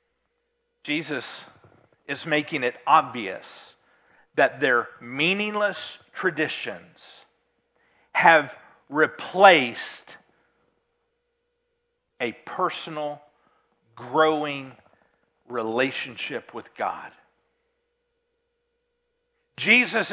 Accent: American